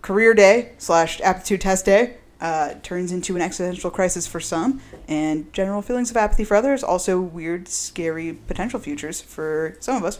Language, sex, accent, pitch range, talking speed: English, female, American, 170-215 Hz, 175 wpm